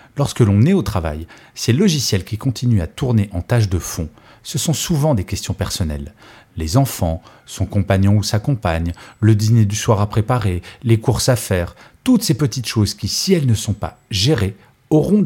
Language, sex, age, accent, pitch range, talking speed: French, male, 40-59, French, 100-135 Hz, 195 wpm